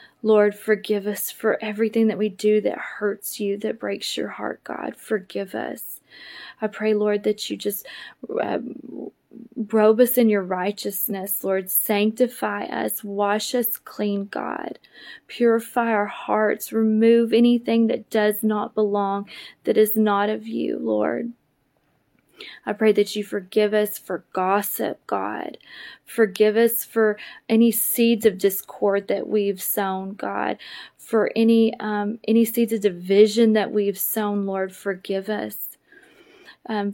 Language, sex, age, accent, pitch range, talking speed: English, female, 20-39, American, 200-225 Hz, 140 wpm